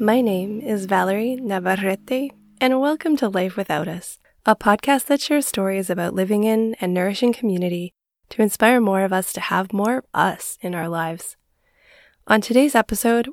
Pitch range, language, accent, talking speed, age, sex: 185-230 Hz, English, American, 165 wpm, 10-29, female